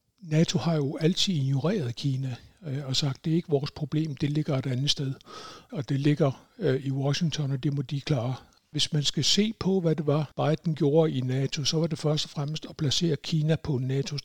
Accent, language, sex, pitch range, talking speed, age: native, Danish, male, 130-155 Hz, 220 wpm, 60-79